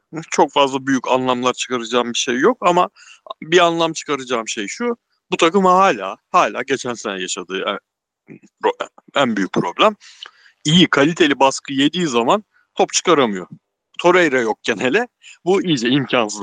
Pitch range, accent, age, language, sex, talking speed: 110-150 Hz, native, 60-79, Turkish, male, 135 wpm